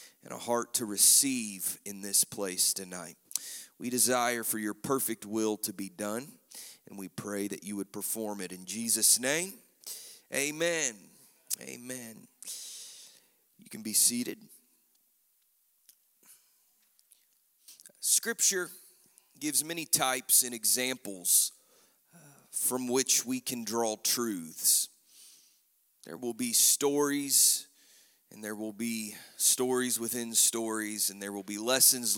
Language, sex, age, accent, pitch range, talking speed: English, male, 30-49, American, 110-135 Hz, 115 wpm